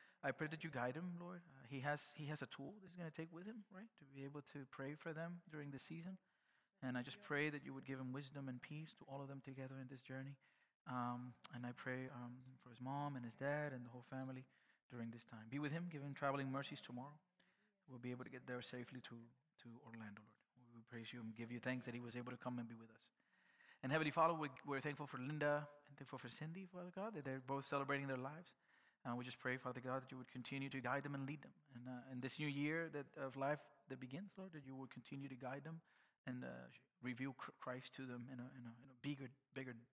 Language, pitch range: English, 125-145 Hz